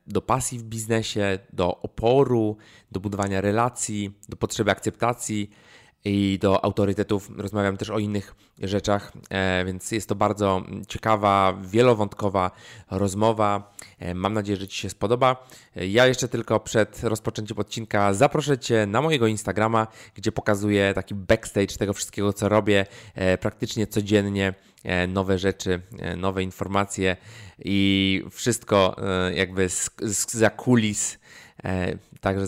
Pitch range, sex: 95-110 Hz, male